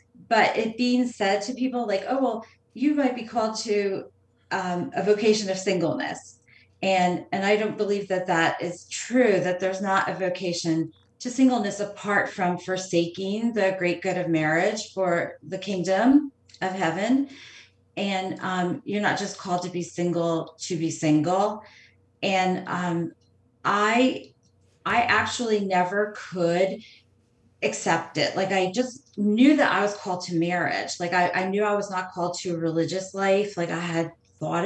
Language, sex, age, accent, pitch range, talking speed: English, female, 30-49, American, 165-205 Hz, 165 wpm